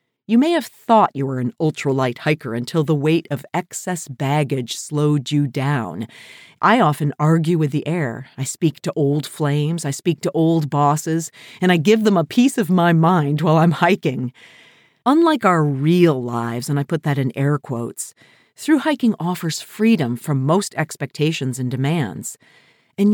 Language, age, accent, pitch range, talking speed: English, 40-59, American, 140-190 Hz, 175 wpm